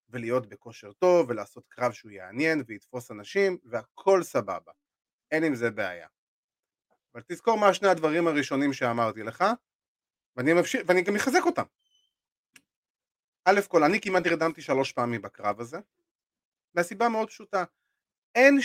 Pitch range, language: 145-235 Hz, Hebrew